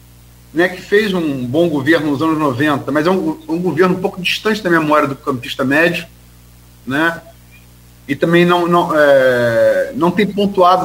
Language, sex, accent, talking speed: Portuguese, male, Brazilian, 170 wpm